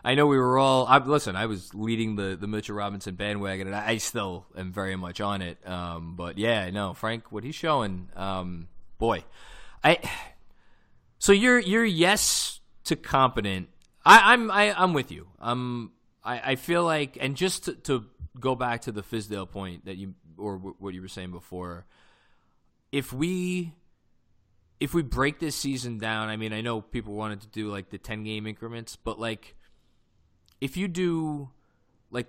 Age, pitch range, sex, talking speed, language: 20-39, 95-130 Hz, male, 180 wpm, English